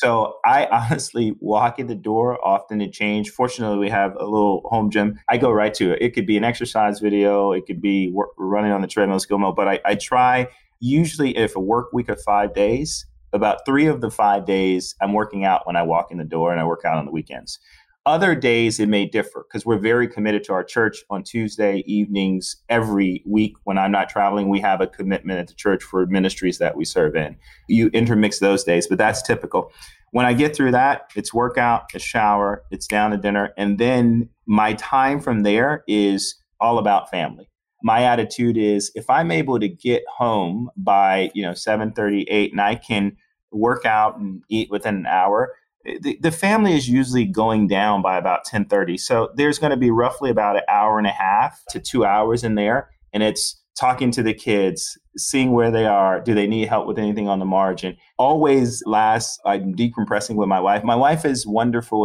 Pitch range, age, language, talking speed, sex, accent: 100-120 Hz, 30-49, English, 210 wpm, male, American